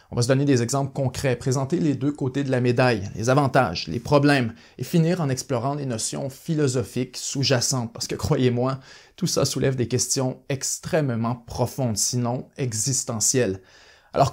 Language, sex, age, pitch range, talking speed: French, male, 20-39, 125-155 Hz, 165 wpm